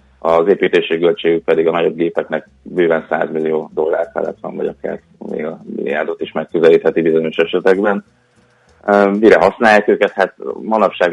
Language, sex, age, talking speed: Hungarian, male, 30-49, 135 wpm